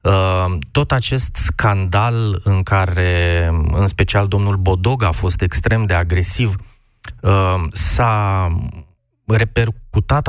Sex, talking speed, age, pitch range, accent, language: male, 95 wpm, 20-39, 90-115 Hz, native, Romanian